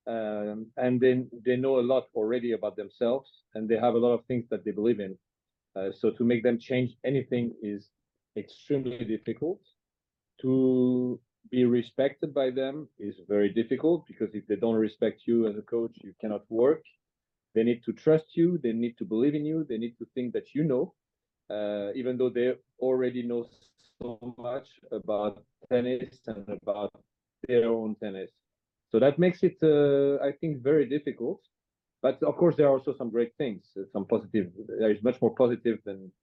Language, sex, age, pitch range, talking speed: English, male, 40-59, 110-130 Hz, 180 wpm